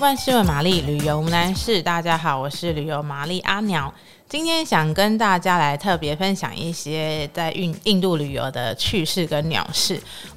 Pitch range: 155-195 Hz